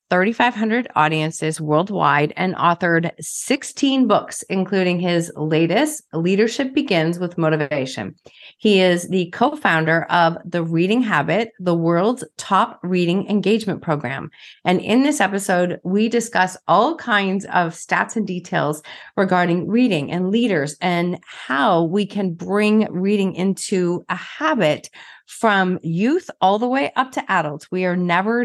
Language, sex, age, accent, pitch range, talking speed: English, female, 30-49, American, 170-215 Hz, 135 wpm